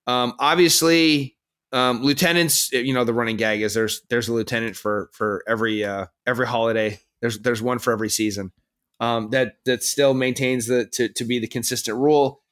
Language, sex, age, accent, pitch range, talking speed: English, male, 30-49, American, 115-145 Hz, 180 wpm